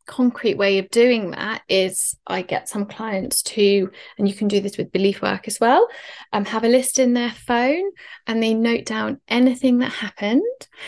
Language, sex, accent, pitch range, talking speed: English, female, British, 195-250 Hz, 195 wpm